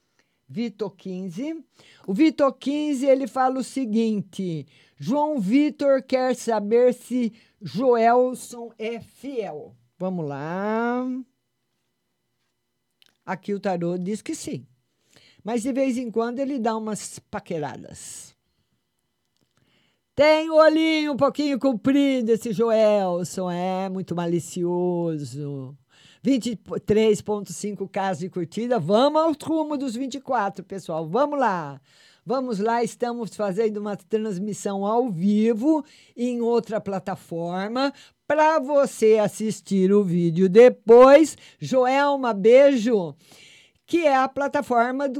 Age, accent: 50-69, Brazilian